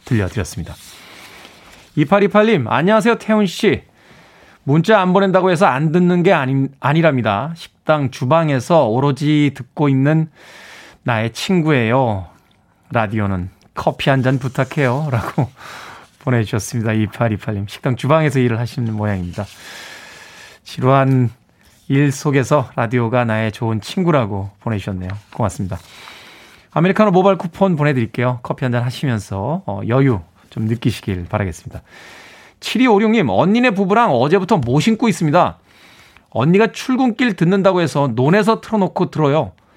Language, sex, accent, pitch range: Korean, male, native, 120-190 Hz